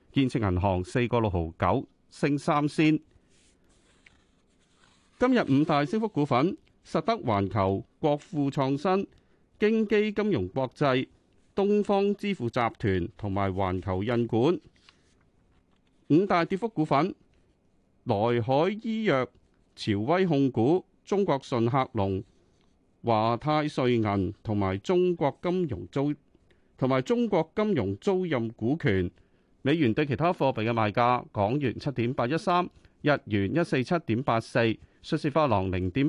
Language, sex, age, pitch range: Chinese, male, 40-59, 105-155 Hz